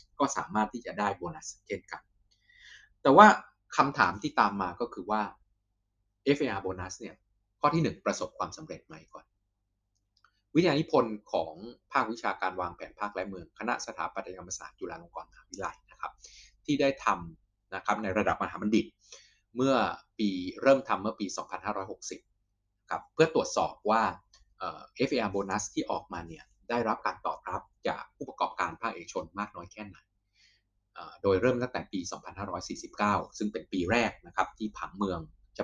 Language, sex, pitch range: Thai, male, 95-115 Hz